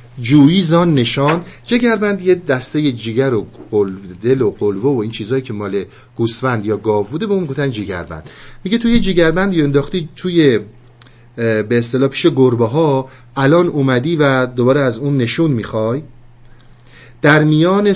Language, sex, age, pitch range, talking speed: Persian, male, 50-69, 120-170 Hz, 145 wpm